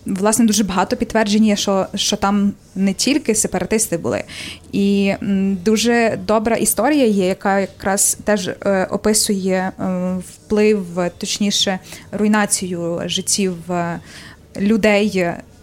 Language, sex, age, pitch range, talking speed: Ukrainian, female, 20-39, 190-215 Hz, 100 wpm